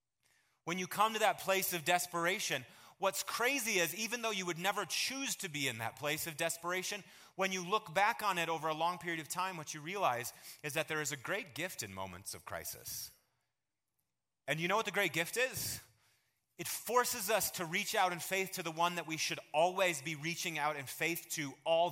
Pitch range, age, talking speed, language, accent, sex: 120-180 Hz, 30-49, 220 wpm, English, American, male